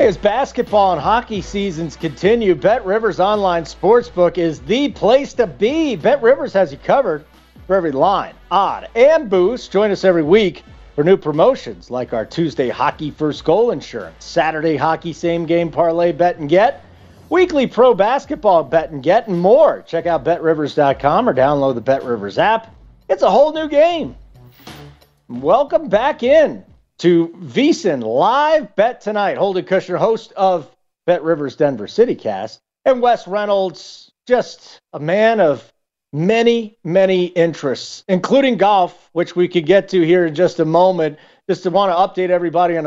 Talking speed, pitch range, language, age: 160 wpm, 165-220 Hz, English, 40-59